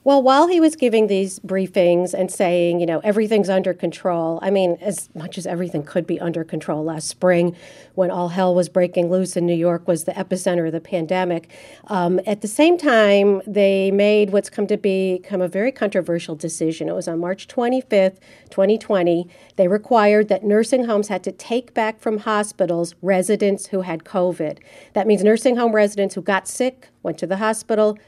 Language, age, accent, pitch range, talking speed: English, 50-69, American, 180-215 Hz, 190 wpm